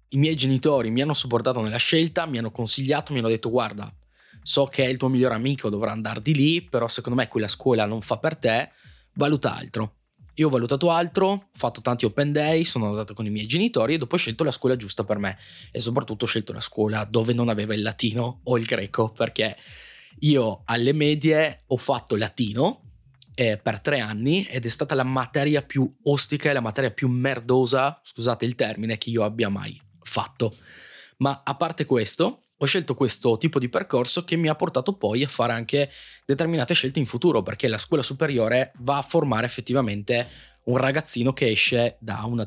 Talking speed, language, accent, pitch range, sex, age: 200 wpm, Italian, native, 115-145 Hz, male, 20-39